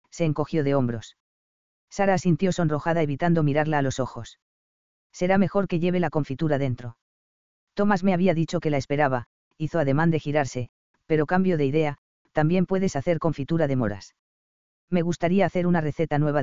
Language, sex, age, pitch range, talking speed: English, female, 40-59, 125-170 Hz, 170 wpm